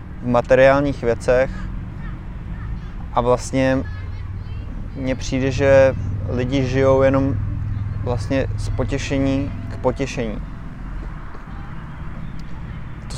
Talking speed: 75 wpm